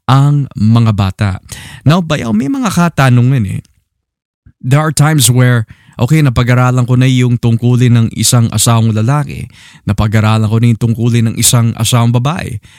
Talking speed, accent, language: 150 wpm, native, Filipino